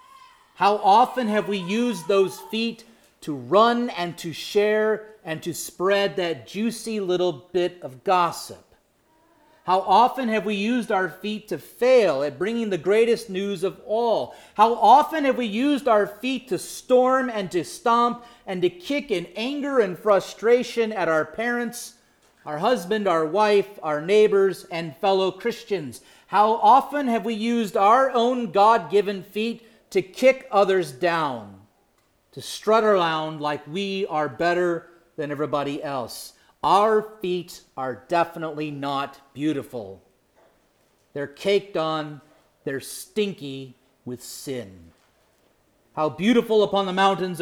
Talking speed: 140 wpm